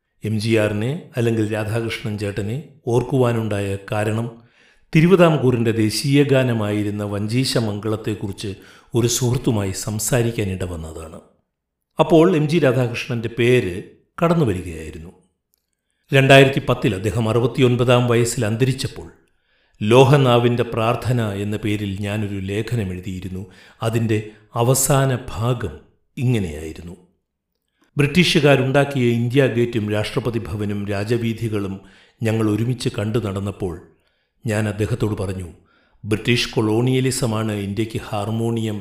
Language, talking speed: Malayalam, 90 wpm